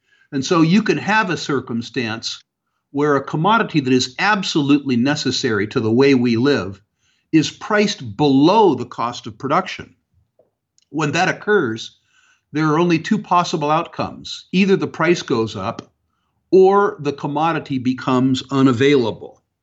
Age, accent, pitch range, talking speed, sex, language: 50-69, American, 120-160 Hz, 140 wpm, male, English